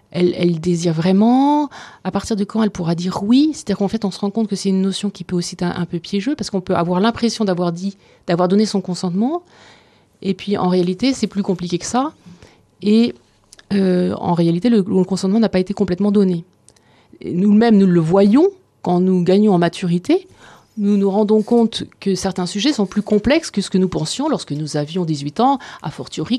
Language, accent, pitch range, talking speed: French, French, 175-220 Hz, 215 wpm